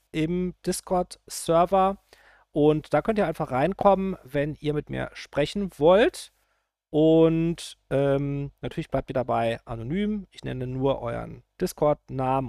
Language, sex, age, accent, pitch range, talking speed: German, male, 40-59, German, 110-160 Hz, 125 wpm